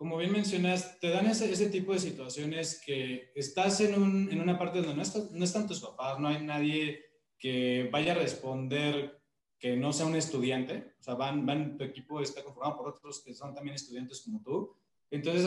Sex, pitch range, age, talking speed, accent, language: male, 140-175 Hz, 20-39, 205 wpm, Mexican, Spanish